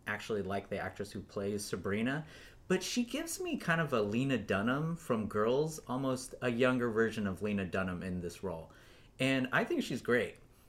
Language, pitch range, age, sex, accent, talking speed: English, 110-150 Hz, 30-49, male, American, 185 wpm